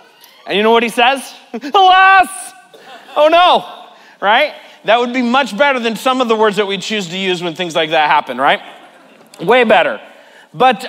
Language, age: English, 30-49